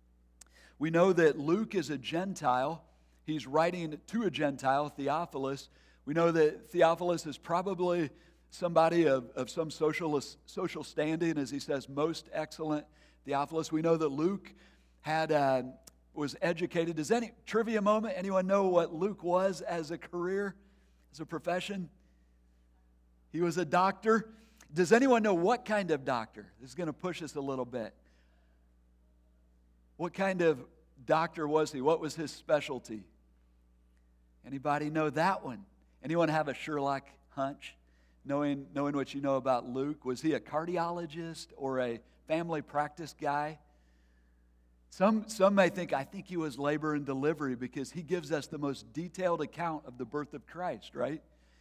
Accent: American